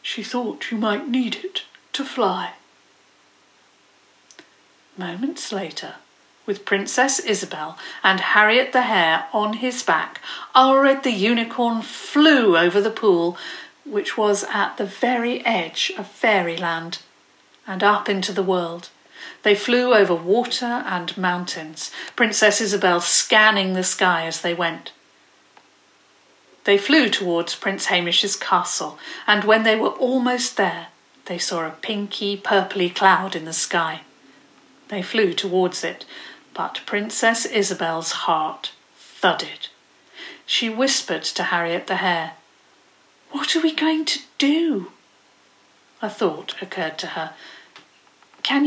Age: 50-69